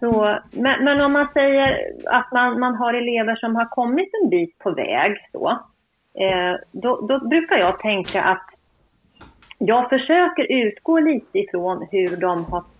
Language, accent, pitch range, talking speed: Swedish, native, 180-250 Hz, 150 wpm